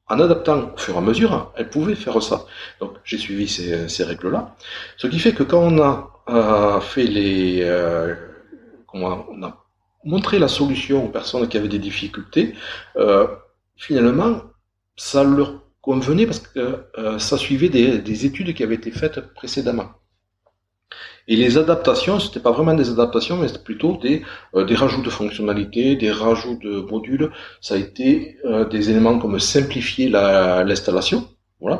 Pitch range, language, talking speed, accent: 100-140 Hz, French, 170 wpm, French